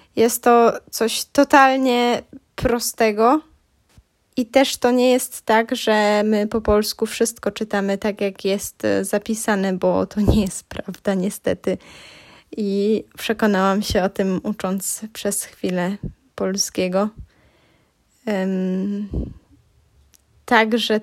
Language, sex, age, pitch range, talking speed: Polish, female, 10-29, 200-235 Hz, 105 wpm